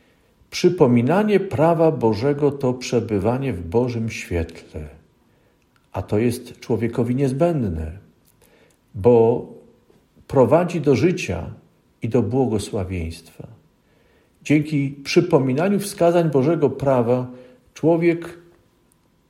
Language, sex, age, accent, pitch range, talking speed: Polish, male, 50-69, native, 105-145 Hz, 80 wpm